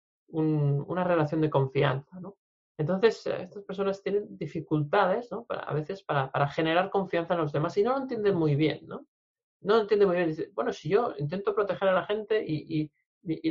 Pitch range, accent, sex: 150-195 Hz, Spanish, male